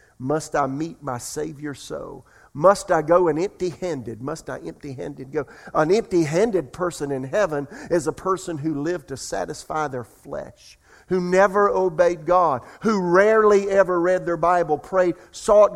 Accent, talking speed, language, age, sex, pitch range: American, 155 wpm, English, 50-69, male, 155-195 Hz